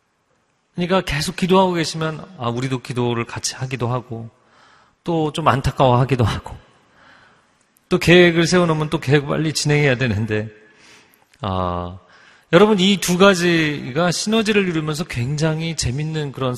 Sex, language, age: male, Korean, 40-59